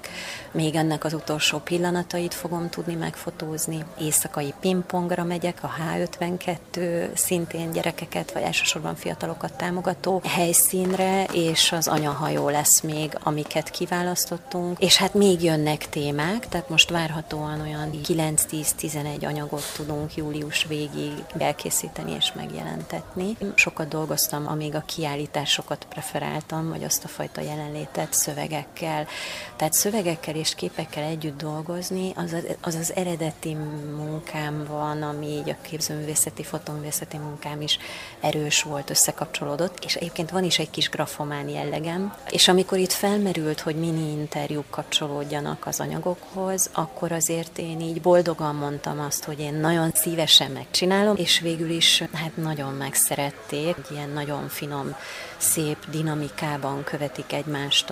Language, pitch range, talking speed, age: Hungarian, 150-175 Hz, 125 wpm, 30-49